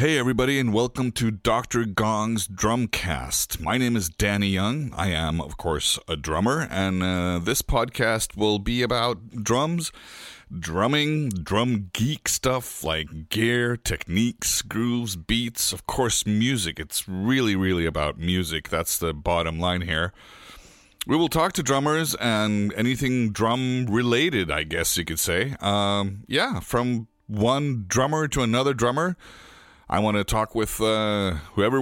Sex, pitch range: male, 95-125 Hz